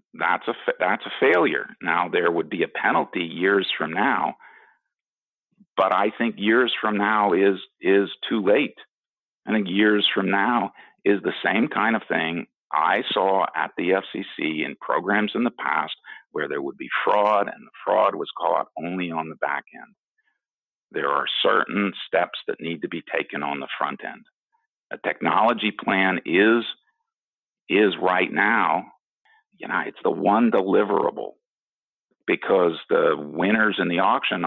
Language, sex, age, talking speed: English, male, 50-69, 160 wpm